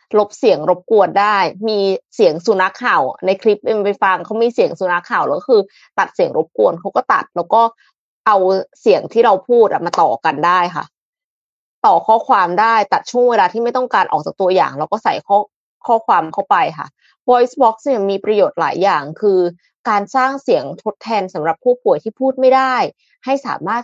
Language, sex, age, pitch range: Thai, female, 20-39, 185-245 Hz